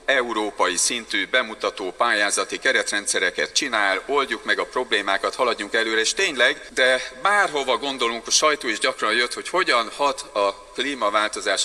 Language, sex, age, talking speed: Hungarian, male, 40-59, 140 wpm